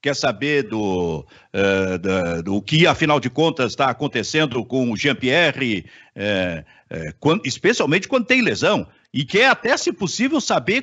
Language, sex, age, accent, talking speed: Portuguese, male, 50-69, Brazilian, 155 wpm